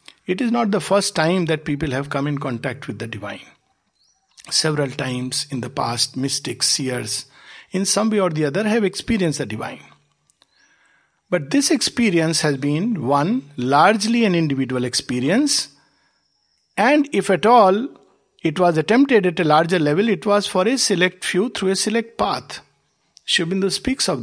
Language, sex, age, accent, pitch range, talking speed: English, male, 60-79, Indian, 140-195 Hz, 165 wpm